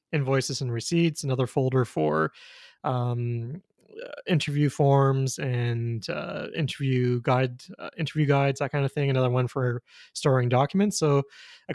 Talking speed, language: 145 wpm, English